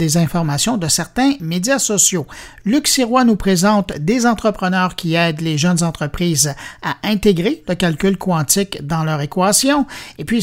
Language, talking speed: French, 155 wpm